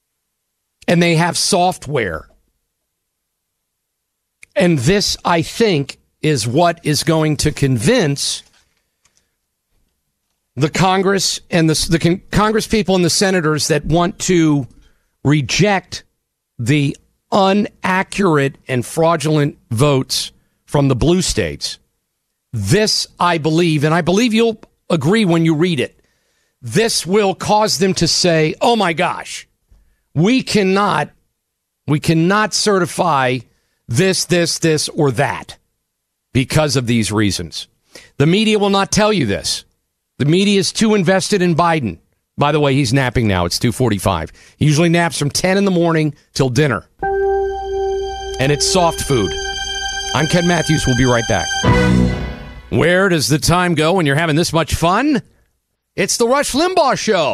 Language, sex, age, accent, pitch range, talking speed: English, male, 50-69, American, 140-195 Hz, 135 wpm